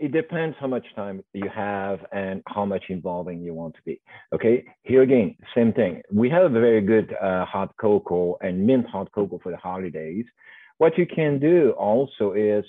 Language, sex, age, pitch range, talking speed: English, male, 50-69, 100-140 Hz, 195 wpm